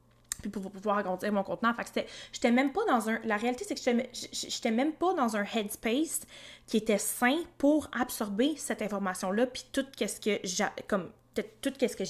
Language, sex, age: French, female, 20-39